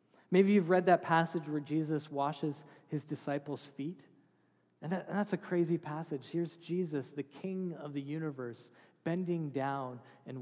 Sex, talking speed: male, 155 wpm